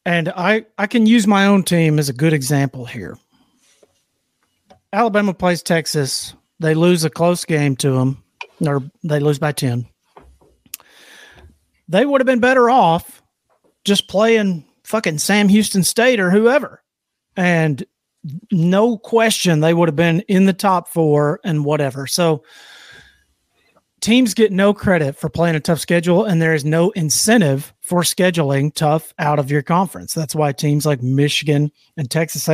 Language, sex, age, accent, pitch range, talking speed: English, male, 40-59, American, 150-190 Hz, 155 wpm